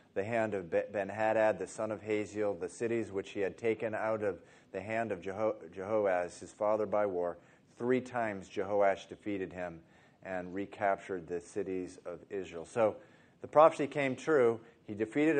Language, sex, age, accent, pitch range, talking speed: English, male, 40-59, American, 95-115 Hz, 170 wpm